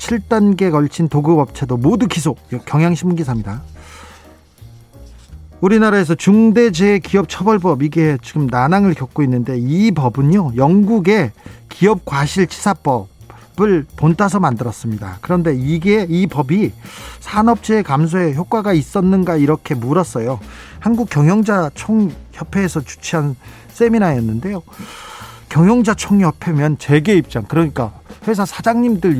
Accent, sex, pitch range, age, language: native, male, 130-200 Hz, 40-59, Korean